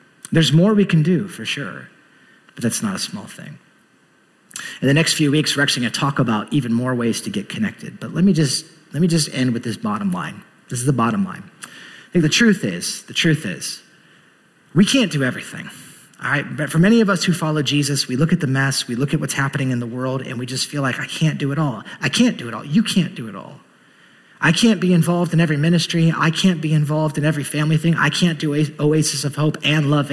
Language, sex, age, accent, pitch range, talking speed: English, male, 30-49, American, 140-180 Hz, 250 wpm